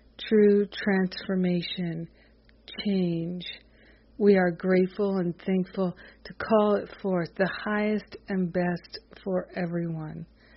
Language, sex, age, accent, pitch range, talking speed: English, female, 50-69, American, 170-195 Hz, 100 wpm